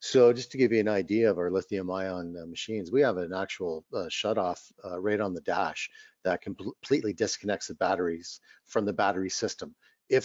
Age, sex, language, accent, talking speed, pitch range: 50-69, male, English, American, 200 wpm, 95-120 Hz